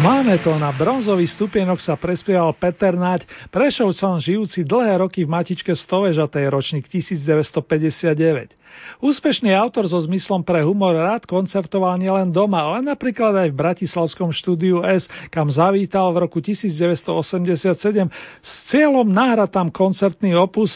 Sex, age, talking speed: male, 40-59, 130 wpm